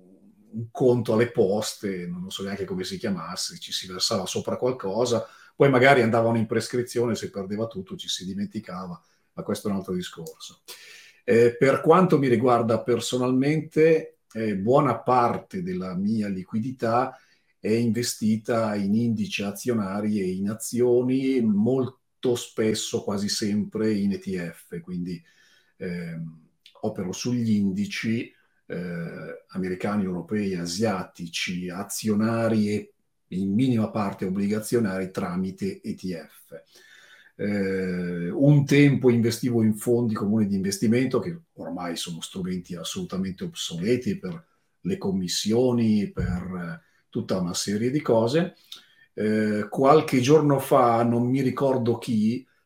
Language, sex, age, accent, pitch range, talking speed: Italian, male, 40-59, native, 100-135 Hz, 120 wpm